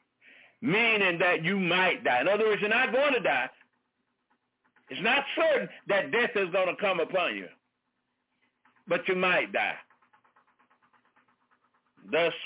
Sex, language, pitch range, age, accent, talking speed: male, English, 175-220 Hz, 60-79, American, 140 wpm